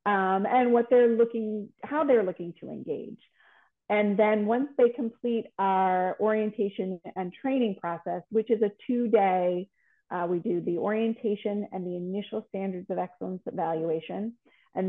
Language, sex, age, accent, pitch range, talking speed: English, female, 30-49, American, 185-235 Hz, 155 wpm